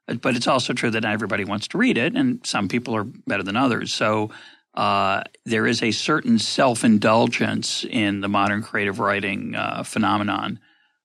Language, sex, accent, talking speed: English, male, American, 175 wpm